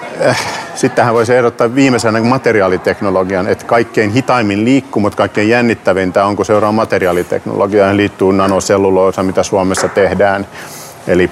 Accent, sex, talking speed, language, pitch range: native, male, 120 wpm, Finnish, 95-115 Hz